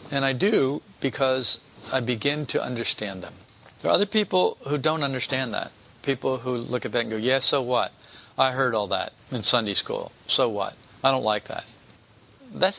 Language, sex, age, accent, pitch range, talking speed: English, male, 50-69, American, 115-165 Hz, 190 wpm